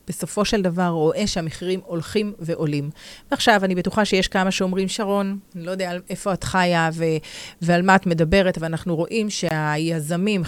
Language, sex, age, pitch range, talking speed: Hebrew, female, 30-49, 170-210 Hz, 165 wpm